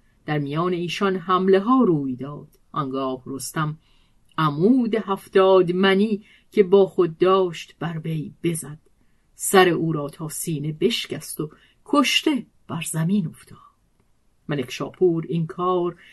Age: 50-69